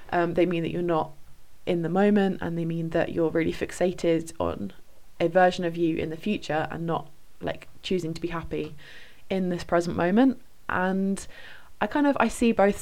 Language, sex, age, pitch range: English, female, 20-39, 165-200 Hz